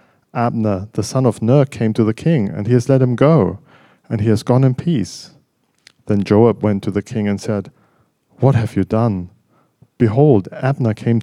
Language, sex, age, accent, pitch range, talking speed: English, male, 40-59, German, 105-125 Hz, 190 wpm